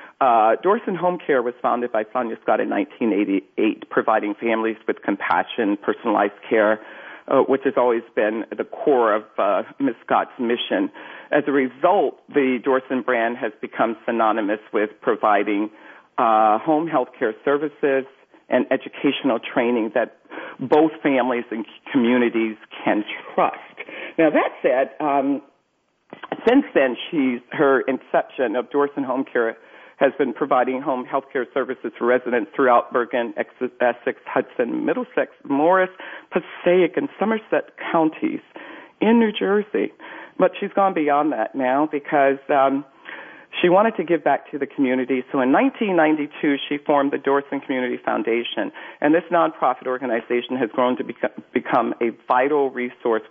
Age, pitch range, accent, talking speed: 50-69, 120-160 Hz, American, 145 wpm